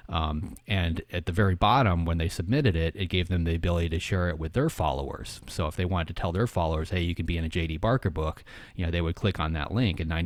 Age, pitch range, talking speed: 30-49, 80-95 Hz, 275 wpm